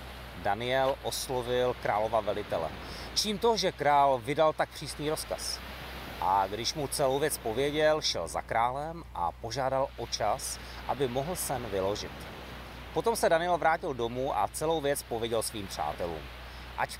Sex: male